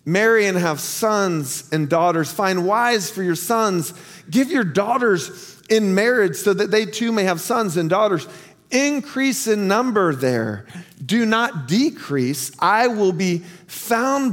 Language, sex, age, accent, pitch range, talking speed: English, male, 40-59, American, 155-205 Hz, 150 wpm